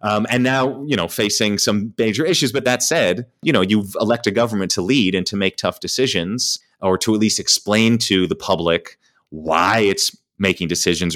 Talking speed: 195 wpm